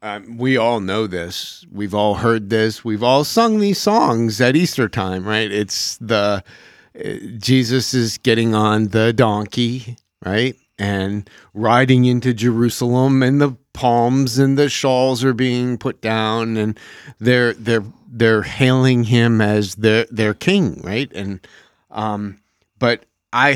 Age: 40-59